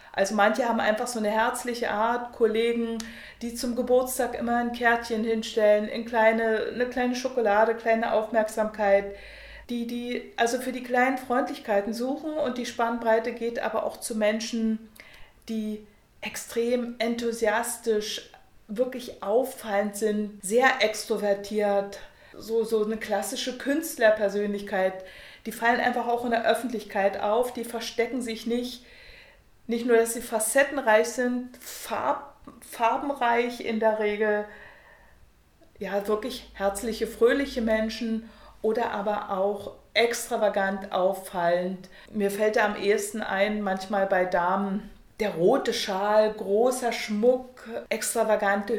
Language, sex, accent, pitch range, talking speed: German, female, German, 210-240 Hz, 120 wpm